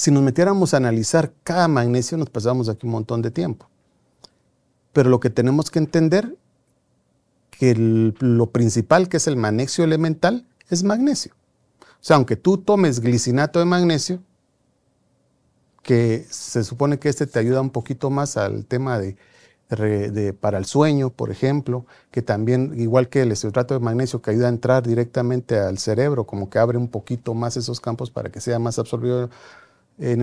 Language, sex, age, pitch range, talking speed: Spanish, male, 40-59, 115-145 Hz, 170 wpm